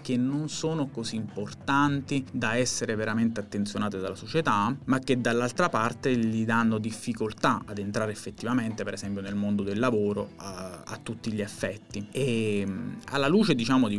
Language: Italian